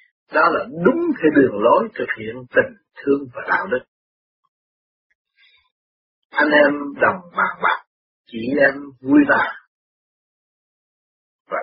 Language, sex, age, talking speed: Vietnamese, male, 50-69, 120 wpm